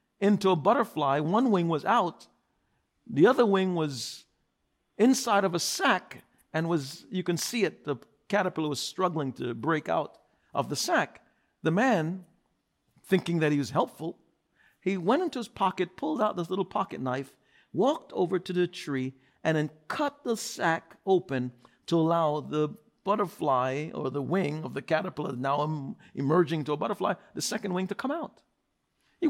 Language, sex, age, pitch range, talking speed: English, male, 50-69, 160-220 Hz, 170 wpm